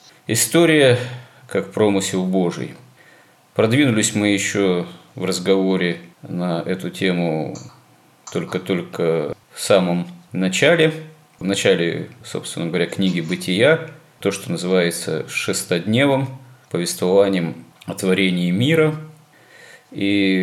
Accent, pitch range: native, 85-110 Hz